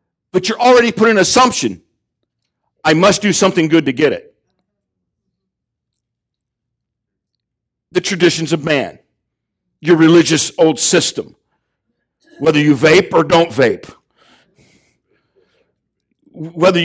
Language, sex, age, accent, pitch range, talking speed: English, male, 50-69, American, 155-220 Hz, 105 wpm